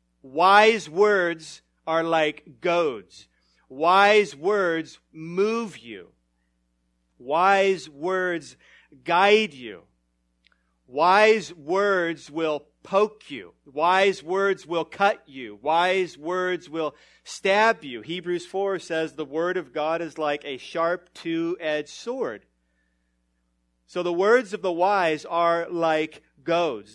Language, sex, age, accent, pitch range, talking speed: English, male, 40-59, American, 130-175 Hz, 110 wpm